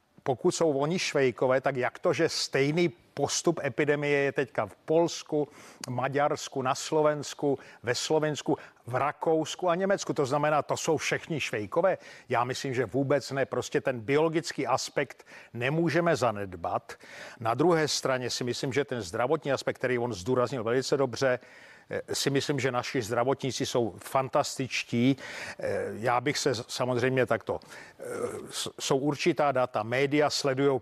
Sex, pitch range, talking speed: male, 125-150 Hz, 140 wpm